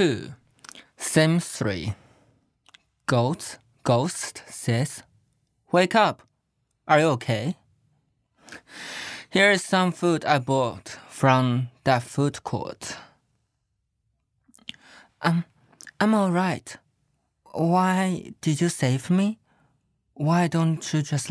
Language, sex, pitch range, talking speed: English, male, 125-180 Hz, 95 wpm